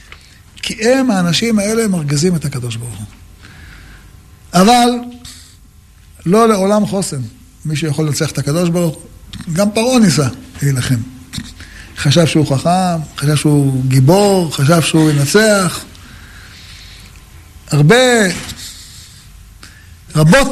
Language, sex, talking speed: Hebrew, male, 100 wpm